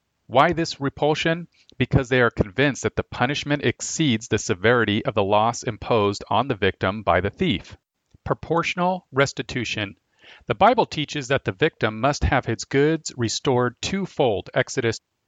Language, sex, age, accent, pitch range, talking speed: English, male, 40-59, American, 115-150 Hz, 150 wpm